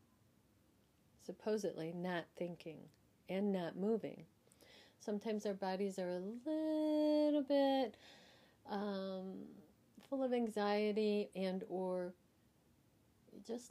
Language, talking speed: English, 90 wpm